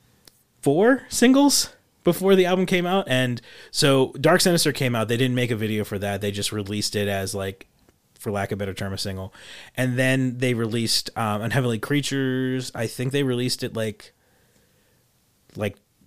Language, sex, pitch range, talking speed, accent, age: English, male, 115-145 Hz, 180 wpm, American, 30-49